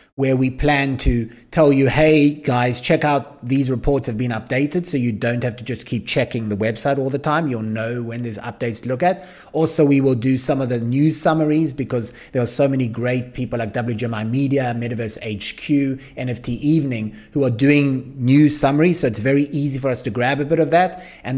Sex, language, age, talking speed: male, English, 30-49, 215 wpm